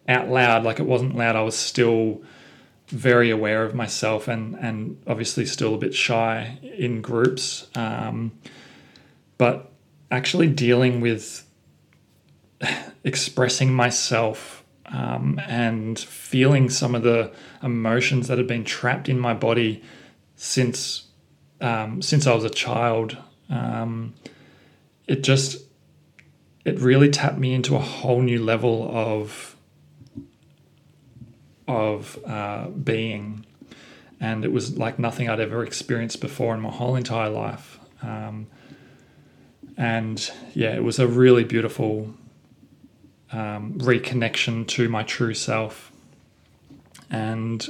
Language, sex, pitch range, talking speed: English, male, 110-125 Hz, 120 wpm